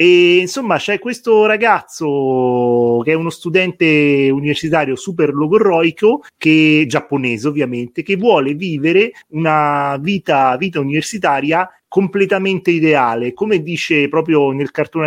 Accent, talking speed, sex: native, 115 wpm, male